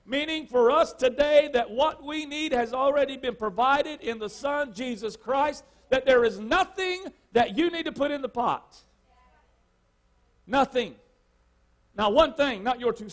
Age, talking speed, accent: 50-69, 165 wpm, American